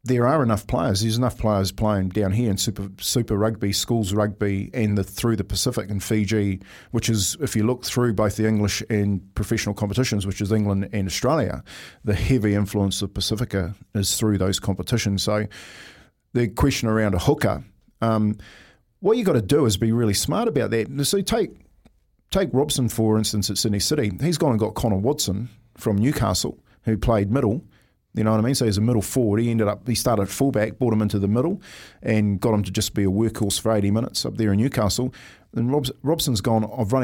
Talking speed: 205 wpm